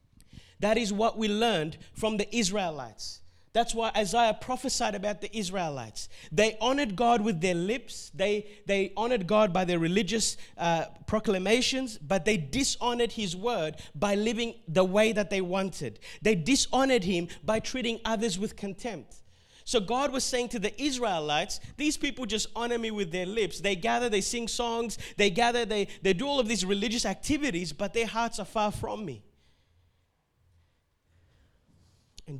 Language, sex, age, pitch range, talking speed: English, male, 30-49, 140-220 Hz, 165 wpm